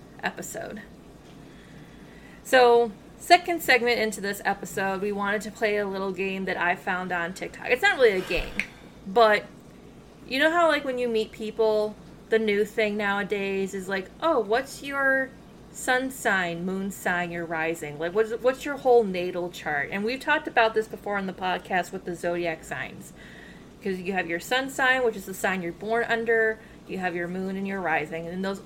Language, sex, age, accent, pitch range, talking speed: English, female, 20-39, American, 190-245 Hz, 190 wpm